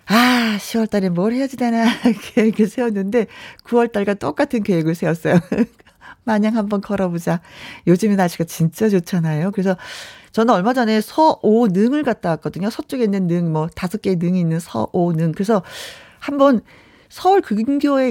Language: Korean